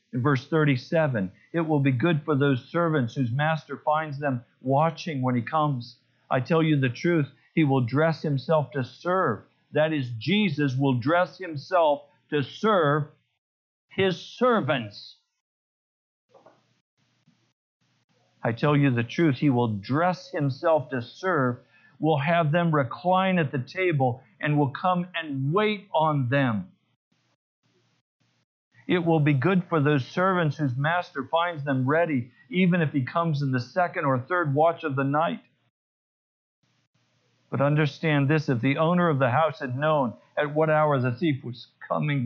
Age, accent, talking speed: 50-69, American, 150 wpm